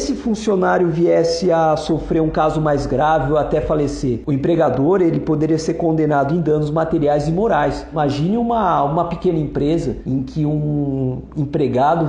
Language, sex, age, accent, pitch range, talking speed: Portuguese, male, 50-69, Brazilian, 155-200 Hz, 160 wpm